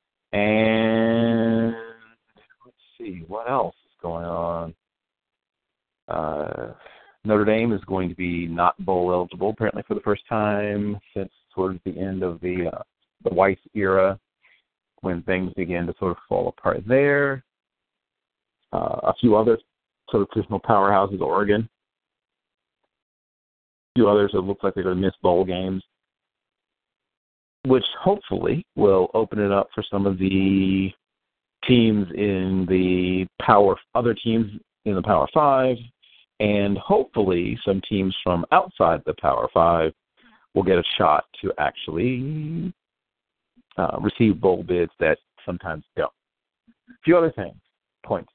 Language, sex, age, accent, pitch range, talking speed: English, male, 40-59, American, 95-115 Hz, 135 wpm